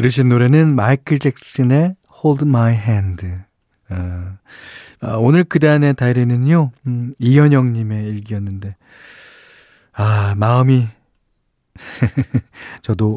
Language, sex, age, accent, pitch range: Korean, male, 40-59, native, 105-135 Hz